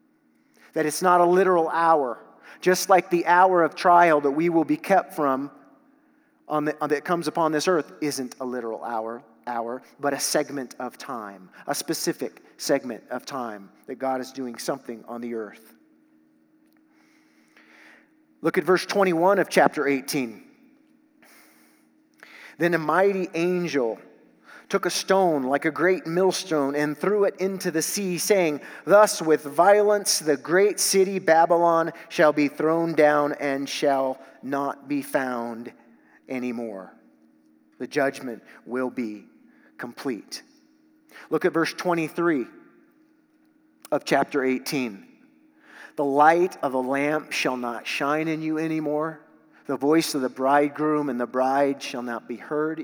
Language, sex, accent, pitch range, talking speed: English, male, American, 140-190 Hz, 140 wpm